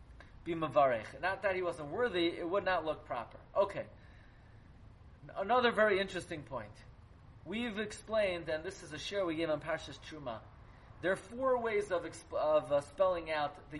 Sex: male